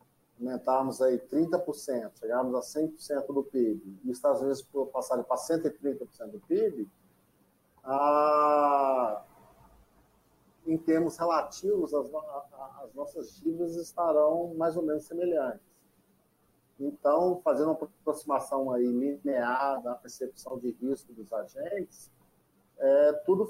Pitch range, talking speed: 135-185 Hz, 100 wpm